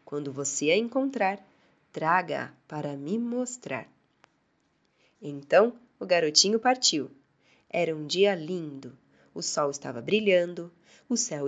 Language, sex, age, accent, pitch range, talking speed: Portuguese, female, 20-39, Brazilian, 150-215 Hz, 115 wpm